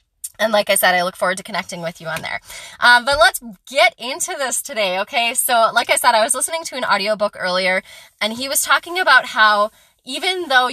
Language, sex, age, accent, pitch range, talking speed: English, female, 20-39, American, 195-255 Hz, 225 wpm